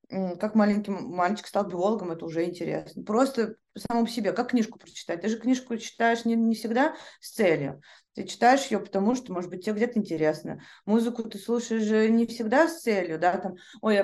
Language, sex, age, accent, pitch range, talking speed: Russian, female, 20-39, native, 195-245 Hz, 185 wpm